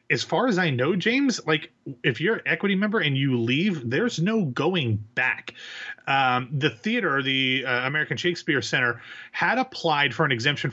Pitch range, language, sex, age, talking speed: 125-165 Hz, English, male, 30-49, 180 wpm